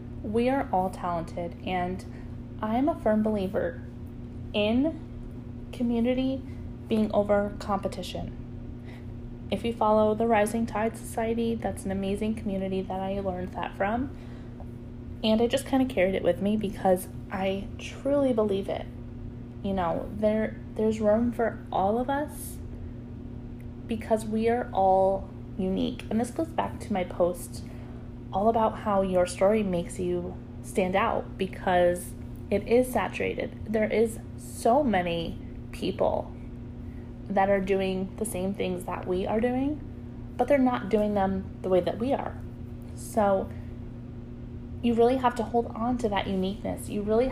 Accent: American